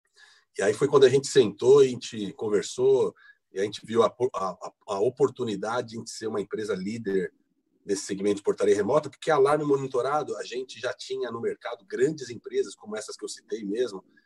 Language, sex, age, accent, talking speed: Portuguese, male, 40-59, Brazilian, 200 wpm